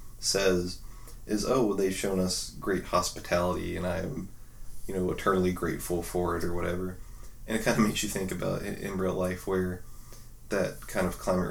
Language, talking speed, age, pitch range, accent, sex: English, 180 wpm, 20-39, 90-95 Hz, American, male